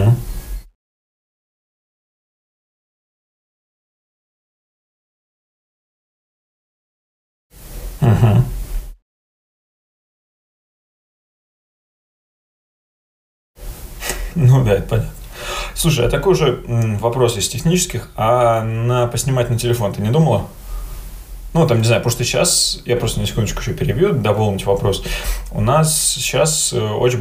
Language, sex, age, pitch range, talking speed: Russian, male, 20-39, 110-130 Hz, 85 wpm